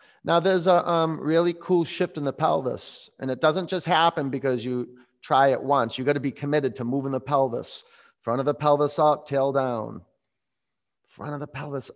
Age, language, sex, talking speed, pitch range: 30-49, English, male, 200 wpm, 115-155 Hz